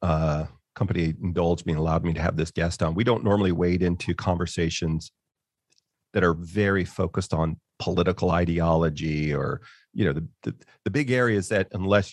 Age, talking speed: 40-59, 175 wpm